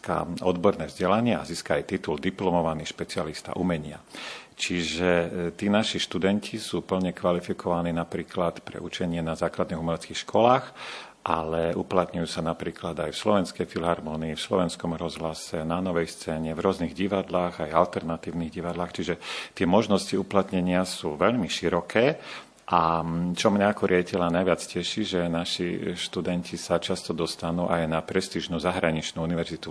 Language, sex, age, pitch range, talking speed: Slovak, male, 50-69, 85-95 Hz, 135 wpm